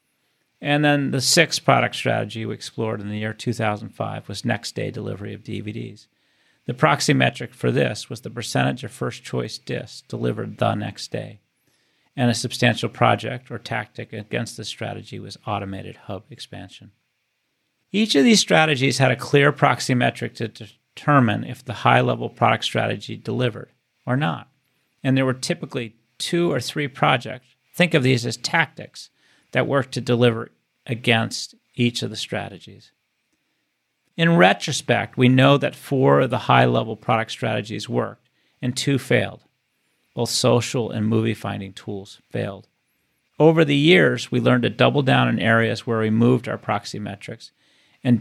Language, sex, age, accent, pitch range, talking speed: English, male, 40-59, American, 110-135 Hz, 155 wpm